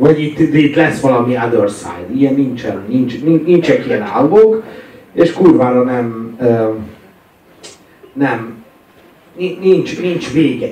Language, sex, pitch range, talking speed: Hungarian, male, 110-155 Hz, 125 wpm